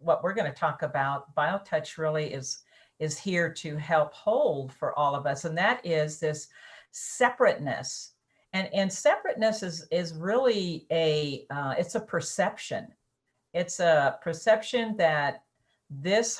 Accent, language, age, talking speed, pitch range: American, English, 50-69, 145 wpm, 160-225 Hz